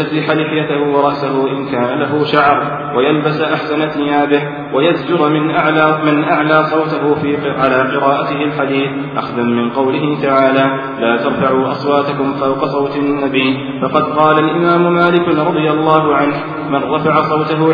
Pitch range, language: 135-155 Hz, Arabic